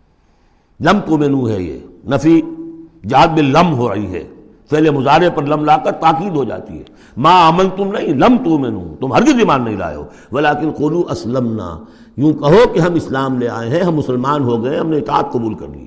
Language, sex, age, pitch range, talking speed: Urdu, male, 60-79, 120-175 Hz, 210 wpm